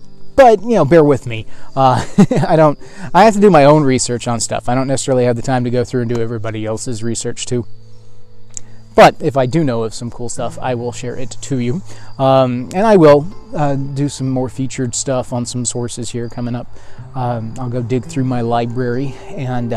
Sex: male